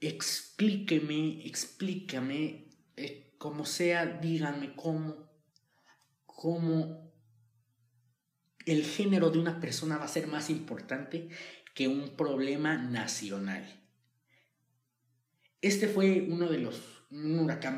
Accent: Mexican